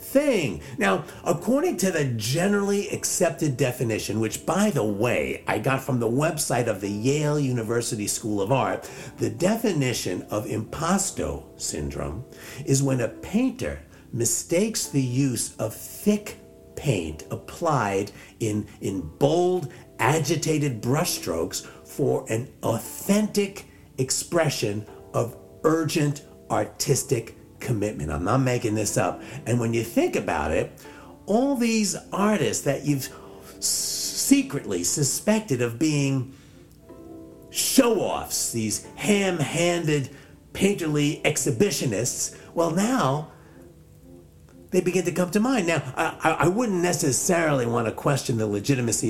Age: 50-69